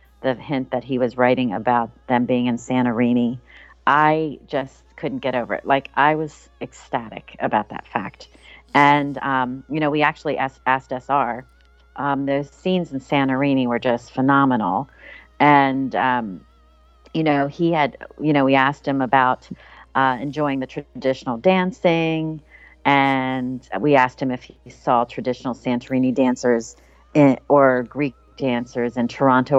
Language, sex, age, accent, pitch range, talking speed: English, female, 40-59, American, 125-155 Hz, 150 wpm